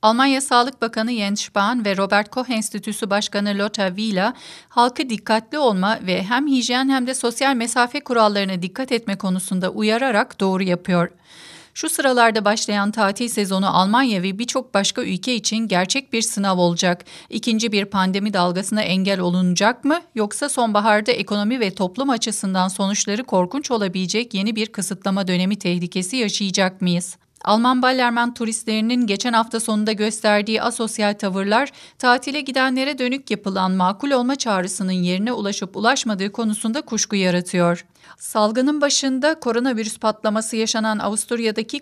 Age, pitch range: 40-59, 195-240 Hz